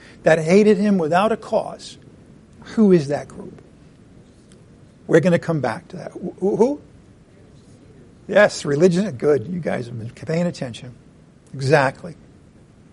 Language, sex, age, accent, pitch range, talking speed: English, male, 50-69, American, 145-190 Hz, 130 wpm